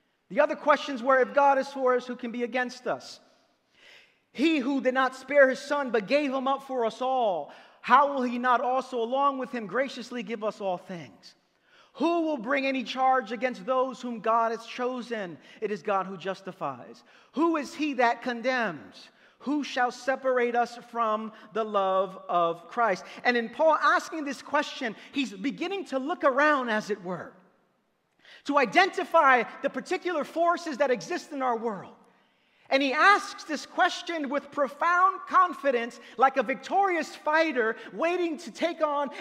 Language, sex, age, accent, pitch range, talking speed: English, male, 40-59, American, 240-320 Hz, 170 wpm